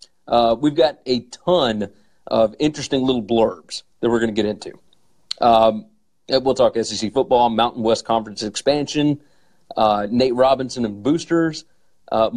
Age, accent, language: 40-59, American, English